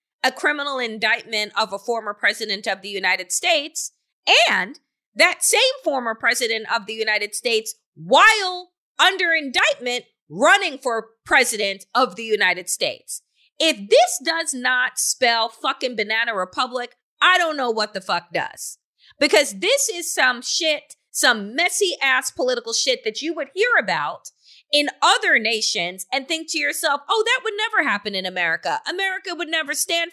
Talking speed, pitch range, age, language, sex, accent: 155 wpm, 235-355 Hz, 30-49, English, female, American